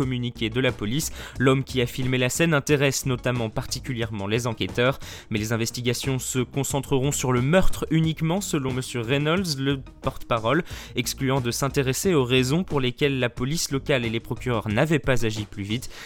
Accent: French